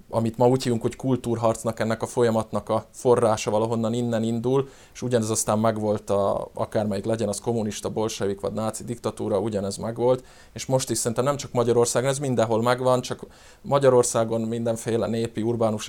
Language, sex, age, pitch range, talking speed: Hungarian, male, 20-39, 105-125 Hz, 160 wpm